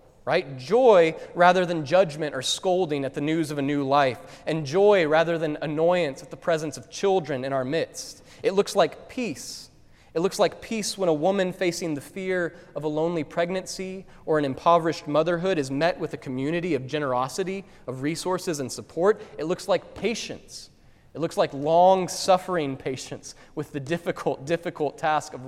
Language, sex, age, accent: English, male, 20-39, American